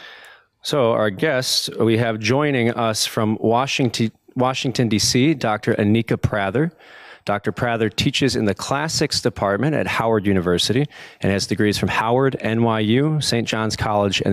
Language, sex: English, male